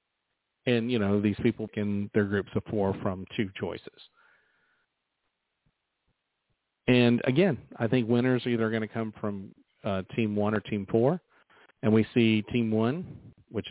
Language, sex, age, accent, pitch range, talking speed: English, male, 40-59, American, 105-125 Hz, 160 wpm